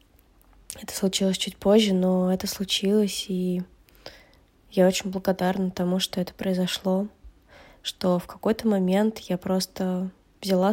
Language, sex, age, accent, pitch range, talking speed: Russian, female, 20-39, native, 185-200 Hz, 125 wpm